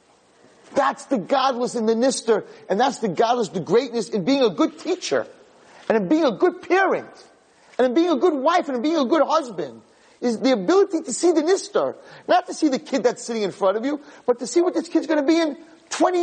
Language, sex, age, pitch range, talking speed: English, male, 30-49, 190-315 Hz, 235 wpm